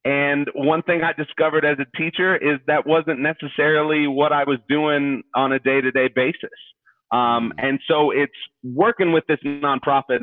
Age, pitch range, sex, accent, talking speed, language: 30-49, 120-150 Hz, male, American, 165 wpm, English